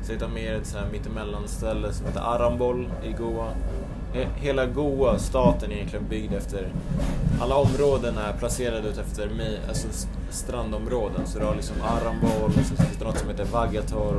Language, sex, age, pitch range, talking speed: Swedish, male, 20-39, 95-120 Hz, 165 wpm